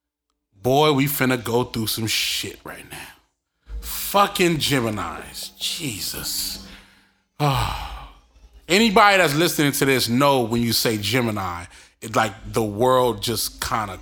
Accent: American